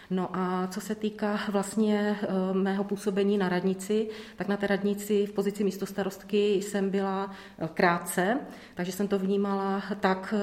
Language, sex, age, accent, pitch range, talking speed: Czech, female, 30-49, native, 190-205 Hz, 145 wpm